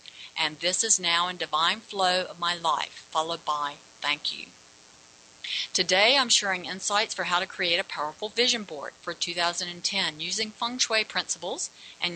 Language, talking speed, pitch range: English, 165 wpm, 165-215 Hz